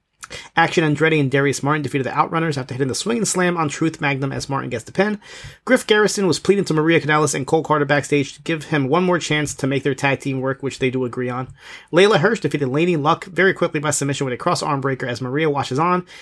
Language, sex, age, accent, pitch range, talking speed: English, male, 30-49, American, 135-165 Hz, 250 wpm